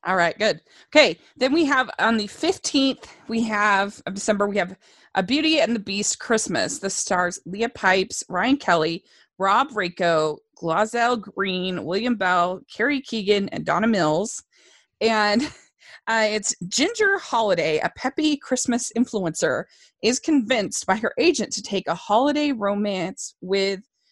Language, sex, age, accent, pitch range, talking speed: English, female, 20-39, American, 195-270 Hz, 145 wpm